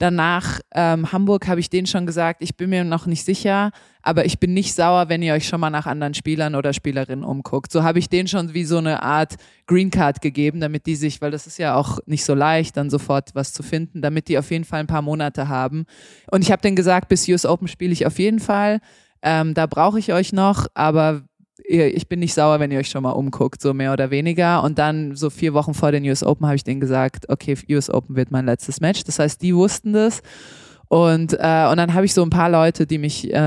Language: German